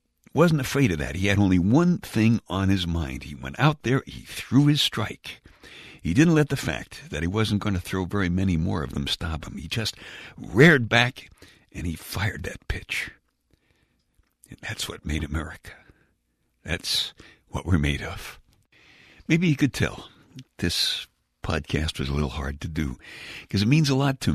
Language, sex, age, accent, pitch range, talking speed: English, male, 60-79, American, 75-110 Hz, 185 wpm